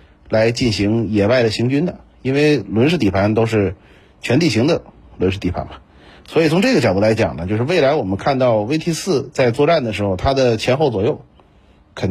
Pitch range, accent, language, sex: 100-130 Hz, native, Chinese, male